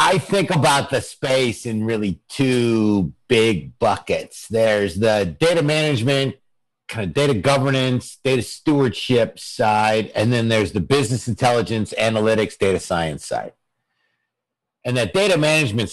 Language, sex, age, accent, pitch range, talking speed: English, male, 50-69, American, 105-130 Hz, 130 wpm